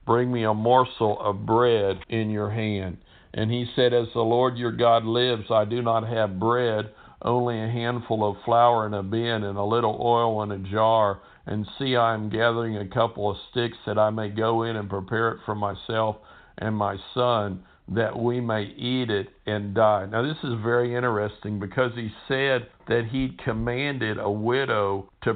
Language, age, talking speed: English, 60-79, 190 wpm